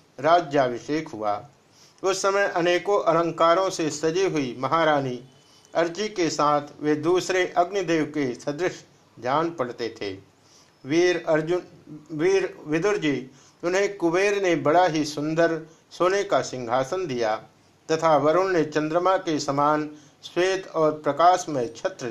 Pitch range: 145-175 Hz